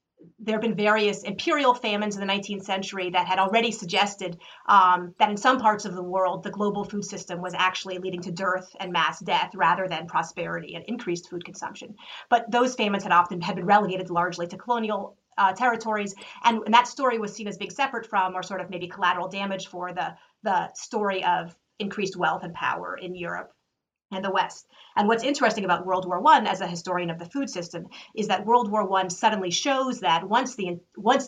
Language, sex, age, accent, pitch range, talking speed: English, female, 30-49, American, 180-210 Hz, 210 wpm